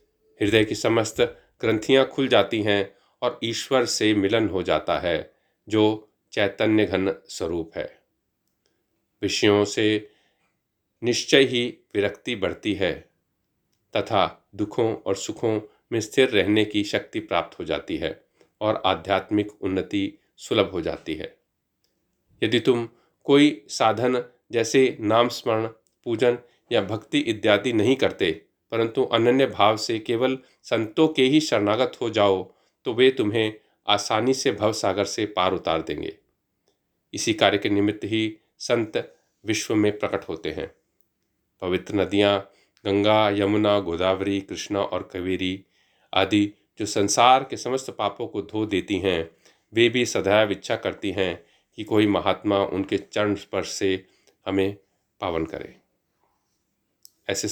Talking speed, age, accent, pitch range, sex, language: 130 wpm, 40-59, native, 100-120 Hz, male, Hindi